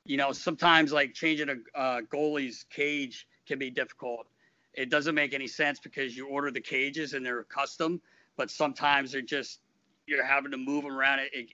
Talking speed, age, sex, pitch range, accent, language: 200 wpm, 50-69, male, 125-150 Hz, American, English